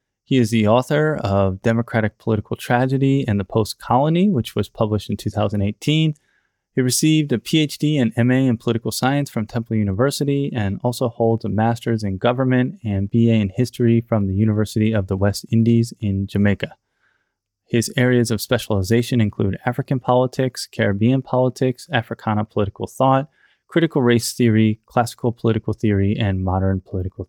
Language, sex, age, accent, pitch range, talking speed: English, male, 20-39, American, 100-125 Hz, 150 wpm